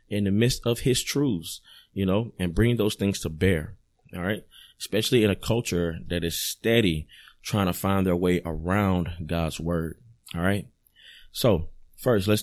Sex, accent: male, American